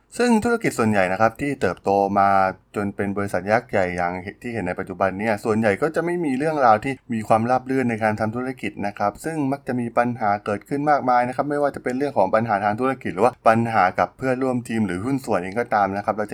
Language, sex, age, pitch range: Thai, male, 20-39, 100-130 Hz